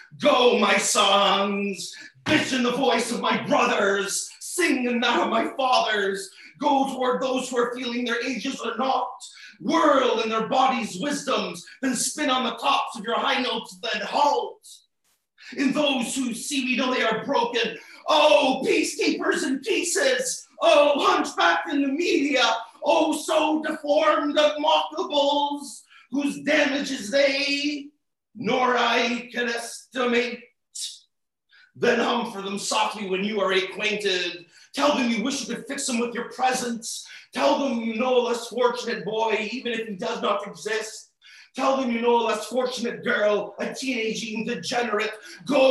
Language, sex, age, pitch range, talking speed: English, male, 40-59, 225-275 Hz, 155 wpm